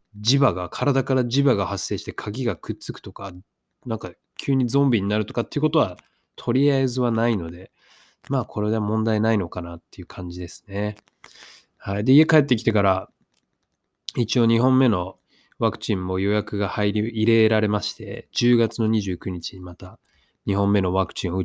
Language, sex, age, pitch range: Japanese, male, 20-39, 95-130 Hz